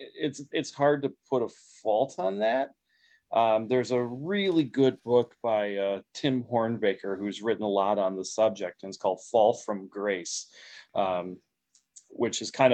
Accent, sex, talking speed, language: American, male, 170 wpm, English